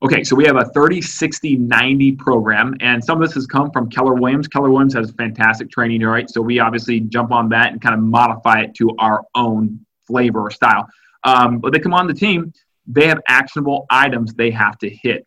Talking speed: 210 wpm